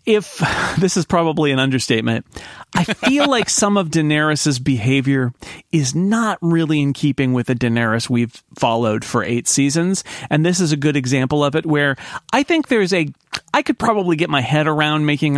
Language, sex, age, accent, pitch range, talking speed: English, male, 40-59, American, 135-185 Hz, 185 wpm